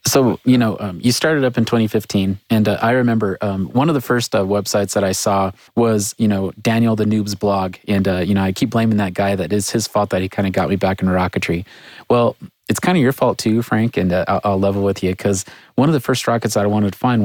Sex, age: male, 30-49